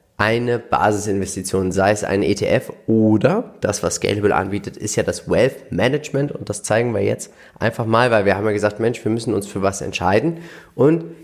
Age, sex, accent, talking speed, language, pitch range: 30-49, male, German, 190 wpm, German, 100-120 Hz